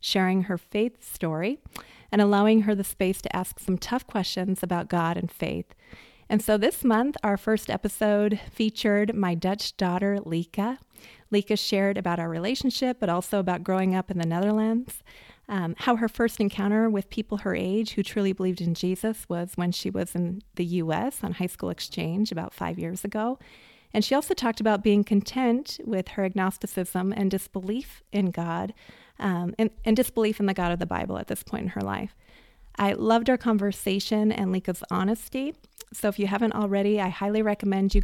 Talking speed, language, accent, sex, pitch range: 185 wpm, English, American, female, 185-215 Hz